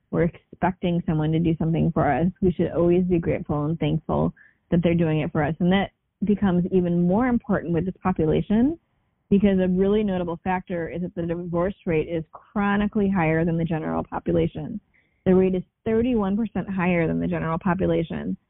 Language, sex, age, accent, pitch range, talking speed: English, female, 20-39, American, 160-185 Hz, 180 wpm